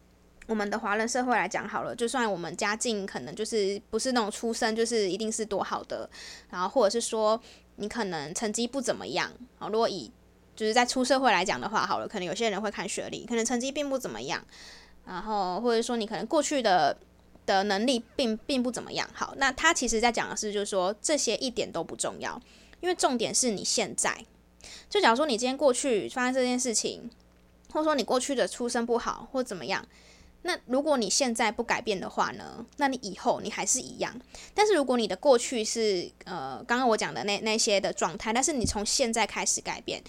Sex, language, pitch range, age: female, Chinese, 205-250 Hz, 20-39